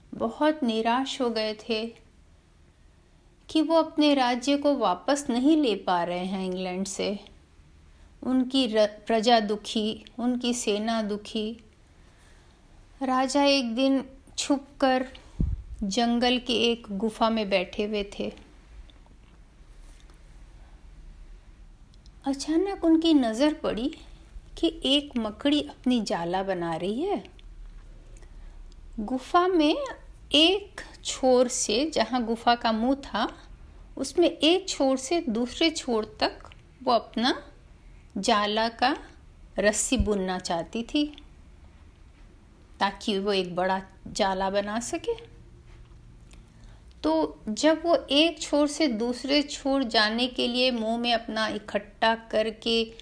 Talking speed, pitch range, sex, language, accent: 110 wpm, 200-270 Hz, female, Hindi, native